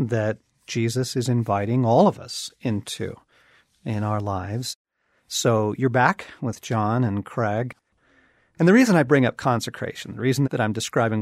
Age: 40-59